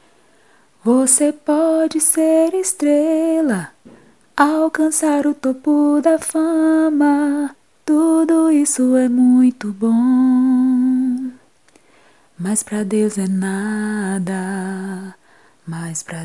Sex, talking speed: female, 80 wpm